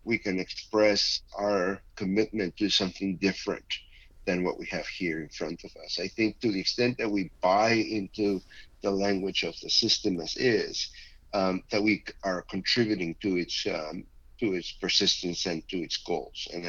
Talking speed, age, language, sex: 175 wpm, 50-69, English, male